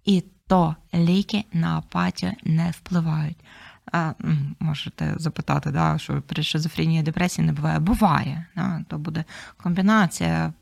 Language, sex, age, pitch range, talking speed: Ukrainian, female, 20-39, 160-185 Hz, 125 wpm